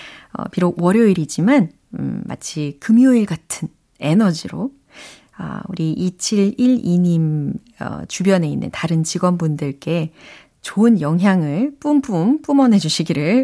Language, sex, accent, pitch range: Korean, female, native, 160-225 Hz